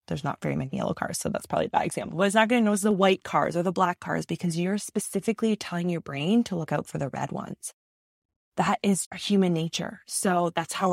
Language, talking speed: English, 255 wpm